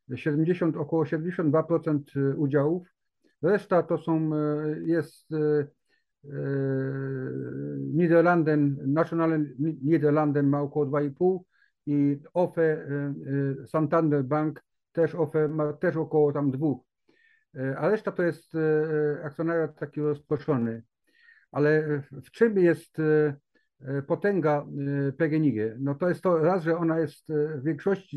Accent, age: native, 50-69